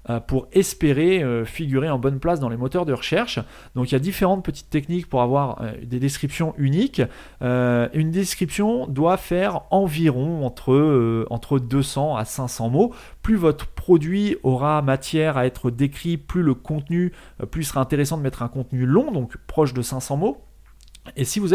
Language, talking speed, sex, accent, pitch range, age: French, 185 wpm, male, French, 125-165 Hz, 30-49